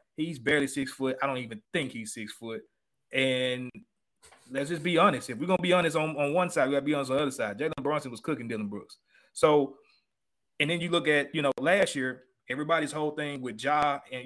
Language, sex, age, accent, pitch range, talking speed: English, male, 30-49, American, 125-155 Hz, 240 wpm